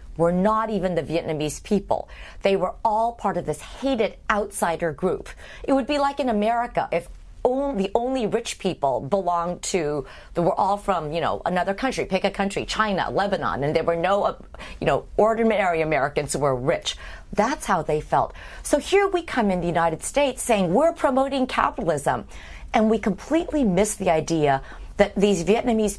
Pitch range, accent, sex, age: 175-245 Hz, American, female, 40-59